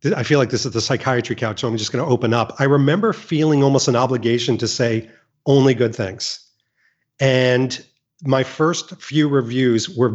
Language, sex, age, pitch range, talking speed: English, male, 40-59, 120-155 Hz, 190 wpm